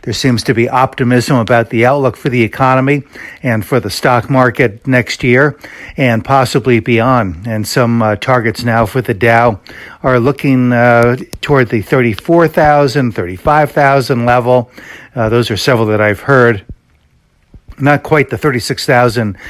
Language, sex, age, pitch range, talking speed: English, male, 60-79, 110-130 Hz, 150 wpm